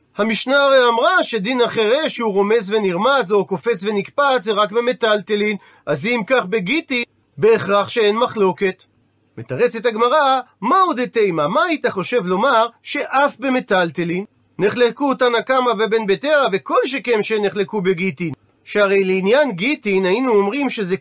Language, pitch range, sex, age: Hebrew, 190-250 Hz, male, 40-59